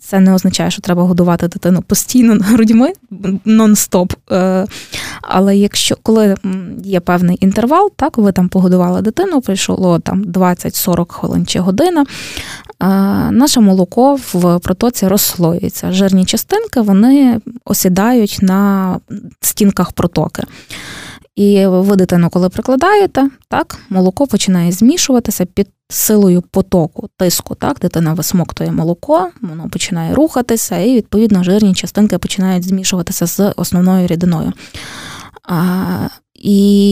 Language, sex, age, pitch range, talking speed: Ukrainian, female, 20-39, 185-225 Hz, 115 wpm